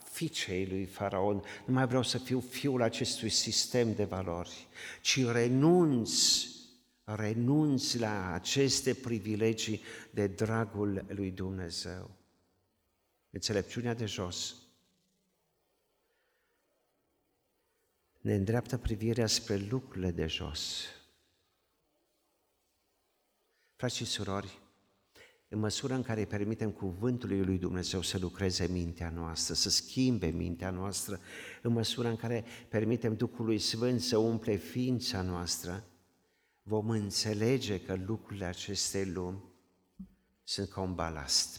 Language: Romanian